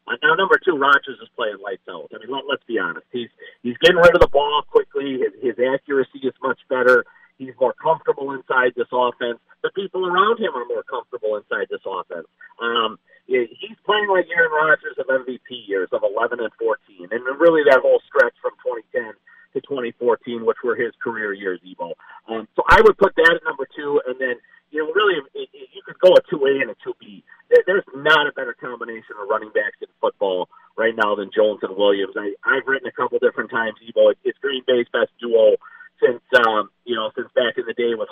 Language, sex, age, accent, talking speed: English, male, 40-59, American, 215 wpm